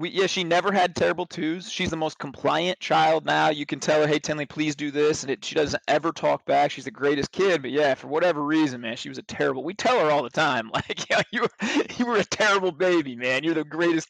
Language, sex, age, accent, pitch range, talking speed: English, male, 30-49, American, 135-160 Hz, 270 wpm